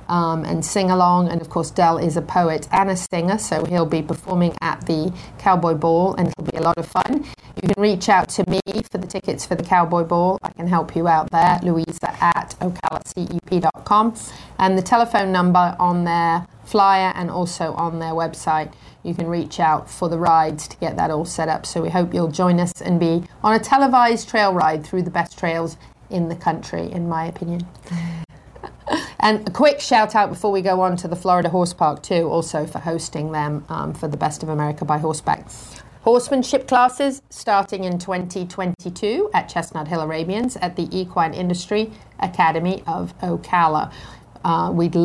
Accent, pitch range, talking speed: British, 165-195 Hz, 190 wpm